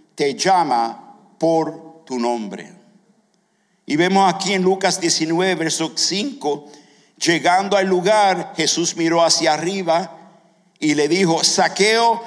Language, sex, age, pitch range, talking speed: English, male, 50-69, 175-210 Hz, 110 wpm